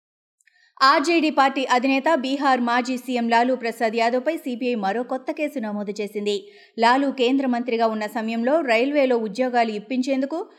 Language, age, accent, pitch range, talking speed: Telugu, 30-49, native, 225-290 Hz, 130 wpm